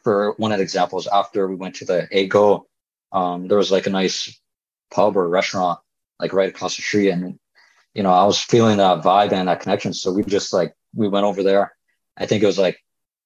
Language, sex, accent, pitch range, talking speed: English, male, American, 95-125 Hz, 220 wpm